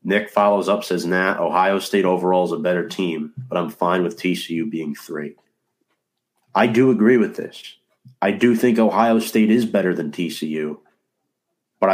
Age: 40-59